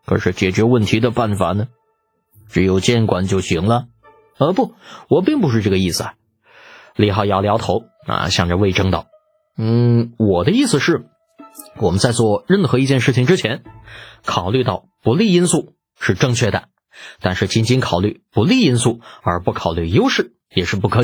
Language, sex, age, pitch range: Chinese, male, 20-39, 100-160 Hz